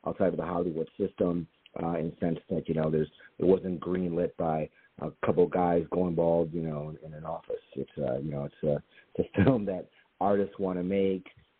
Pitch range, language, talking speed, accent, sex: 80-95 Hz, English, 225 wpm, American, male